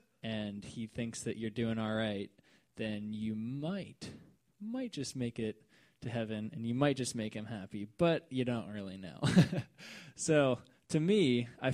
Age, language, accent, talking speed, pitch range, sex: 20-39, English, American, 170 wpm, 110-130 Hz, male